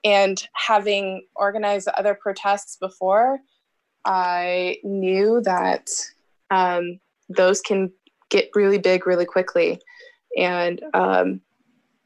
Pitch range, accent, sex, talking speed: 185-215 Hz, American, female, 95 wpm